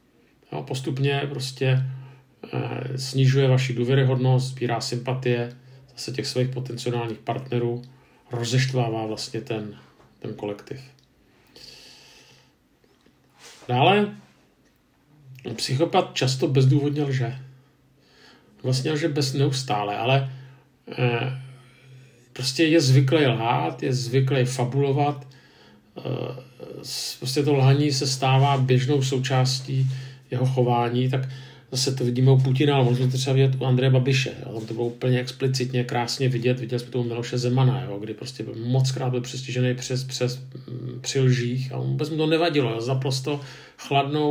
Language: Czech